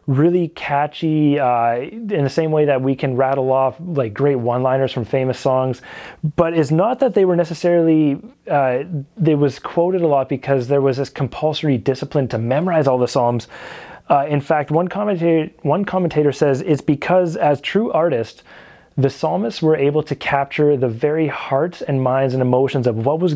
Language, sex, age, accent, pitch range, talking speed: English, male, 30-49, American, 130-155 Hz, 180 wpm